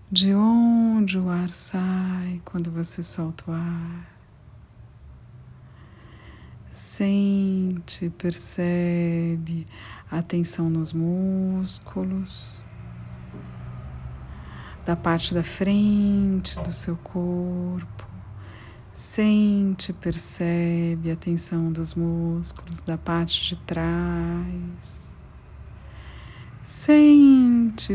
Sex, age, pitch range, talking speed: female, 50-69, 160-190 Hz, 75 wpm